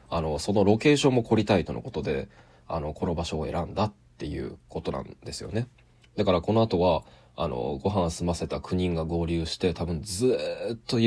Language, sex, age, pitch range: Japanese, male, 20-39, 85-105 Hz